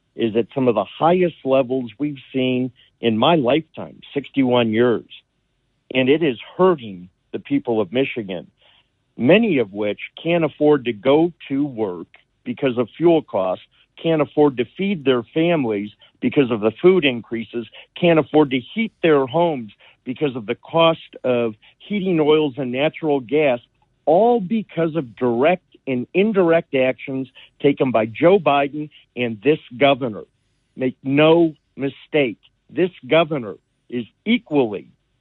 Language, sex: English, male